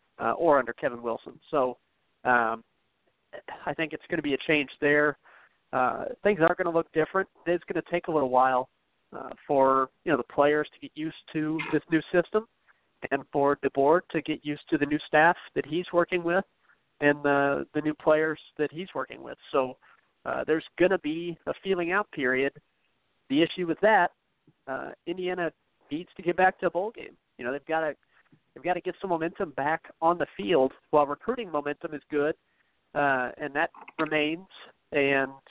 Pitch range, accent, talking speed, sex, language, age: 140-170 Hz, American, 195 wpm, male, English, 40-59